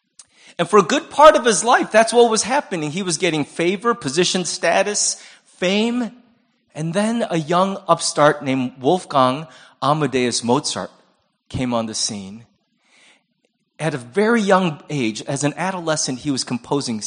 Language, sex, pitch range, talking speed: English, male, 140-205 Hz, 150 wpm